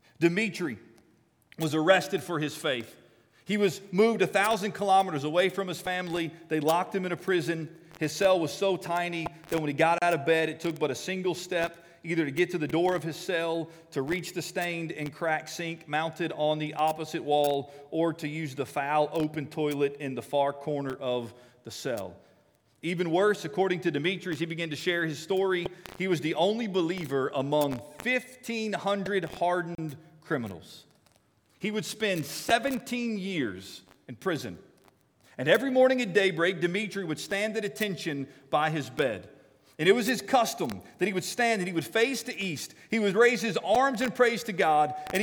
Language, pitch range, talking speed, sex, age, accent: English, 155-195 Hz, 185 wpm, male, 40-59, American